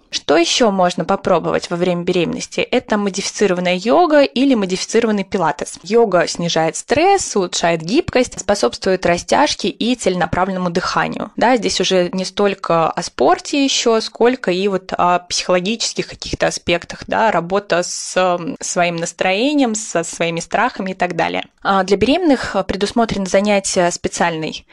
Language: Russian